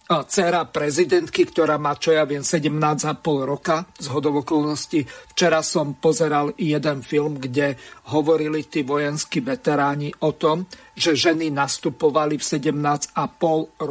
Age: 50-69